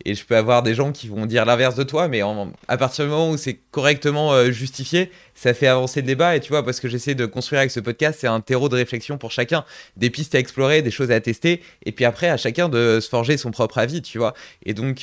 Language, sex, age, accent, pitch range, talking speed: French, male, 20-39, French, 115-140 Hz, 275 wpm